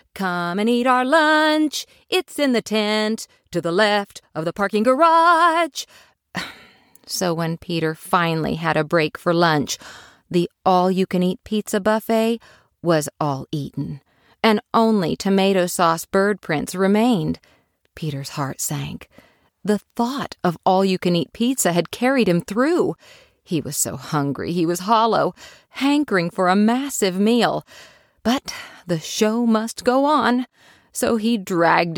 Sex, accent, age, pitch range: female, American, 40-59, 165-235 Hz